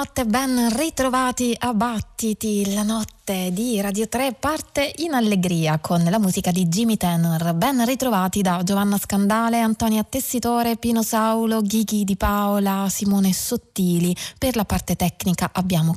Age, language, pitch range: 20-39, Italian, 170-220 Hz